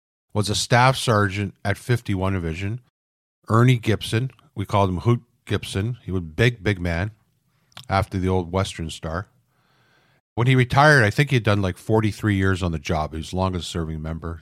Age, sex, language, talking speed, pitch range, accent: 50-69, male, English, 175 wpm, 90-115 Hz, American